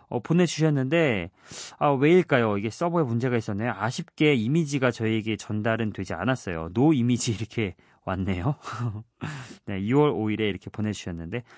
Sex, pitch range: male, 105-150 Hz